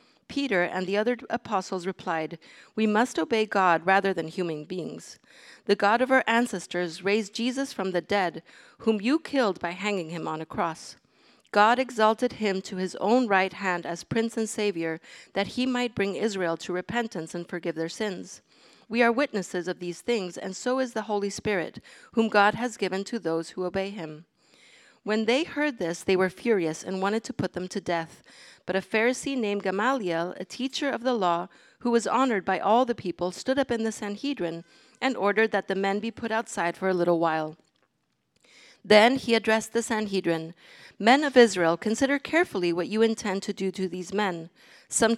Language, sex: English, female